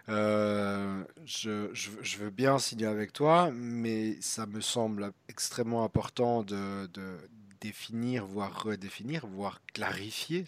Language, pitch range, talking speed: French, 110-140 Hz, 125 wpm